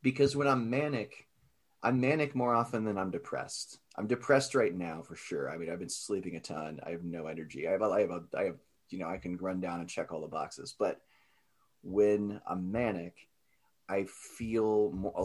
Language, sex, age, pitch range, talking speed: English, male, 30-49, 85-115 Hz, 215 wpm